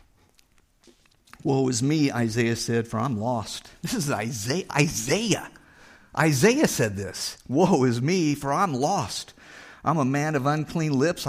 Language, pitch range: English, 110-140 Hz